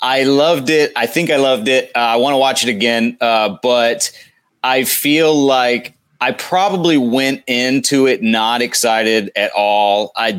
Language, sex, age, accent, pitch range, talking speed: English, male, 30-49, American, 105-125 Hz, 175 wpm